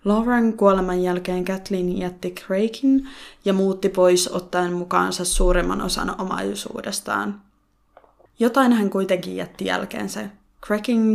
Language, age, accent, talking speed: Finnish, 20-39, native, 110 wpm